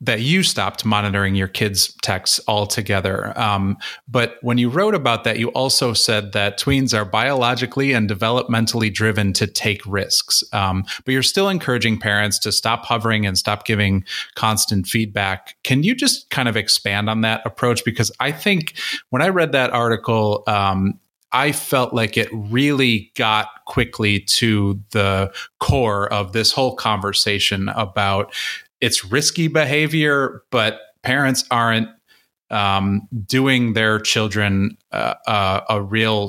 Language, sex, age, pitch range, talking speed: English, male, 30-49, 100-120 Hz, 145 wpm